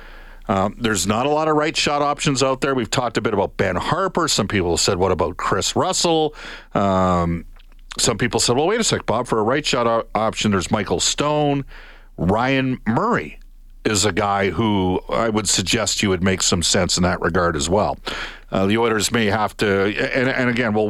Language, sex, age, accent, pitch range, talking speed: English, male, 50-69, American, 100-130 Hz, 205 wpm